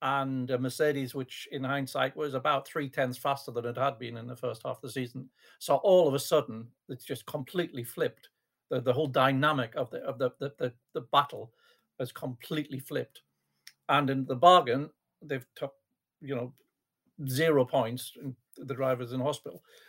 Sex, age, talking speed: male, 50-69, 185 wpm